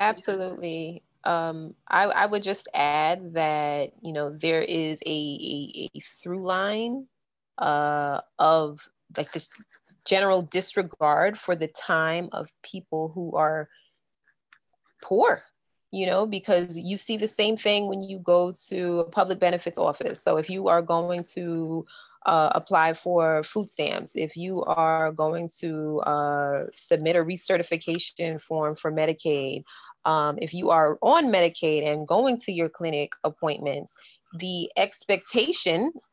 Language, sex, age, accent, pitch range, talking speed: English, female, 20-39, American, 160-195 Hz, 140 wpm